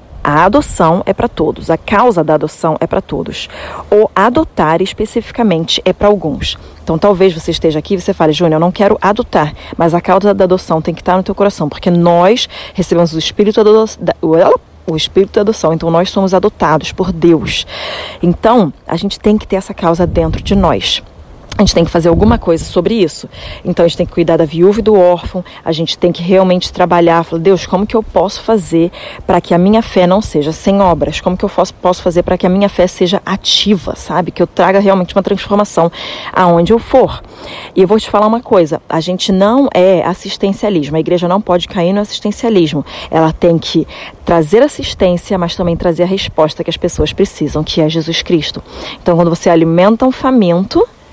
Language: Portuguese